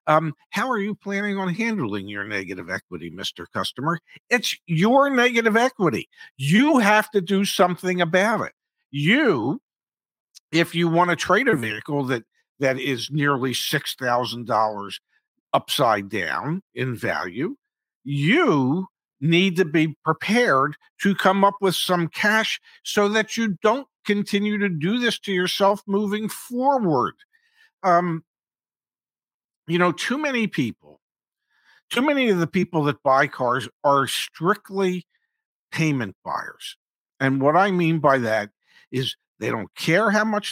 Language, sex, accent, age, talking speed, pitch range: English, male, American, 50-69, 140 wpm, 135-210 Hz